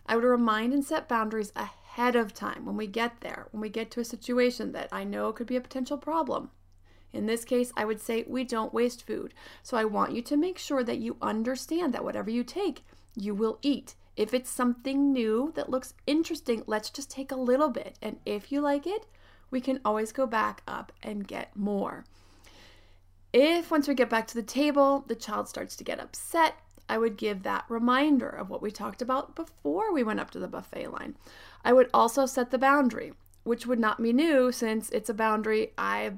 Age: 30-49